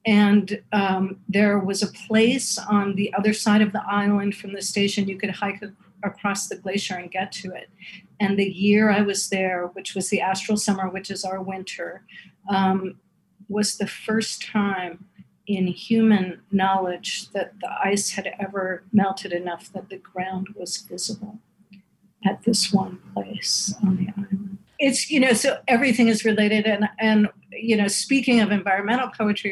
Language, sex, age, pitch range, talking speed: English, female, 50-69, 190-210 Hz, 170 wpm